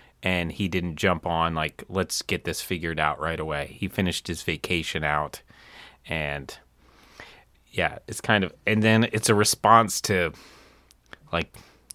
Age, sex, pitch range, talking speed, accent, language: 30-49, male, 85-105 Hz, 150 wpm, American, English